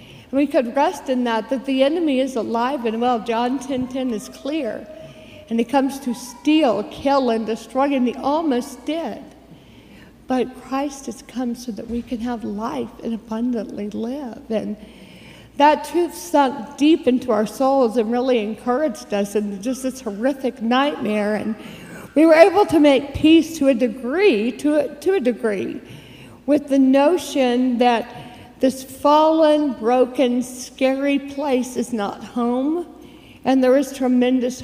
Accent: American